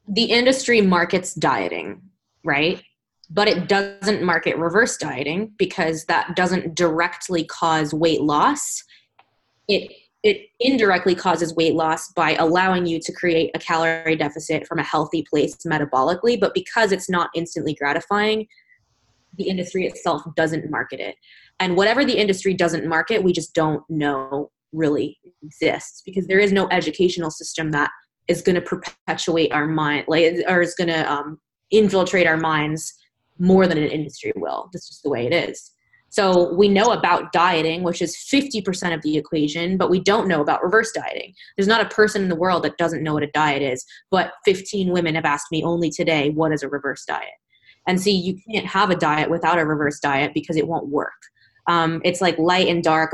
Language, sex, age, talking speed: English, female, 20-39, 180 wpm